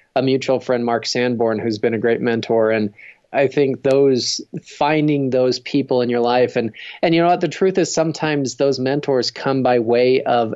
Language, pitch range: English, 115-135 Hz